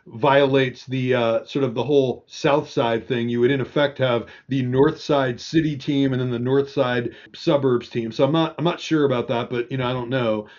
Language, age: English, 40-59